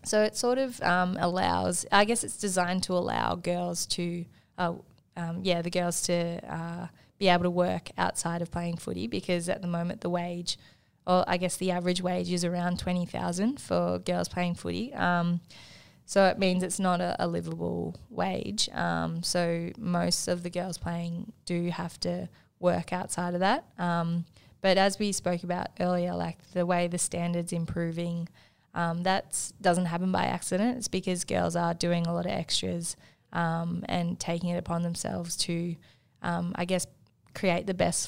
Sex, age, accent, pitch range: female, 20-39, Australian, 170-180 Hz